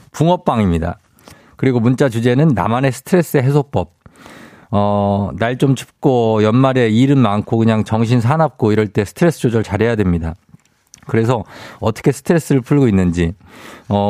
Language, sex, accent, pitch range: Korean, male, native, 105-150 Hz